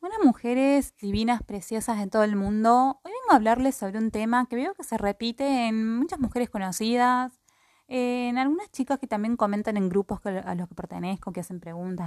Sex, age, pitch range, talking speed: female, 20-39, 200-255 Hz, 195 wpm